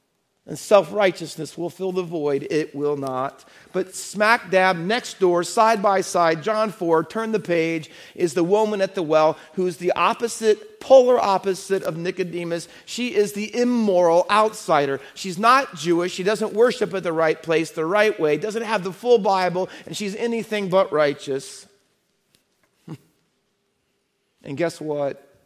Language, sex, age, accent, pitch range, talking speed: English, male, 40-59, American, 140-190 Hz, 160 wpm